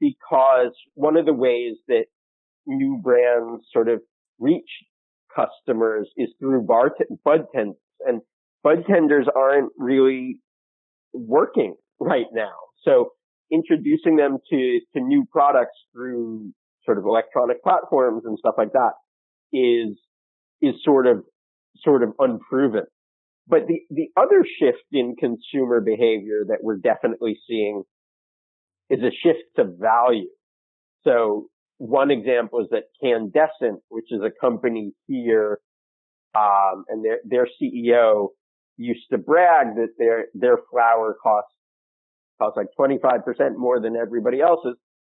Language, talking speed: English, 130 wpm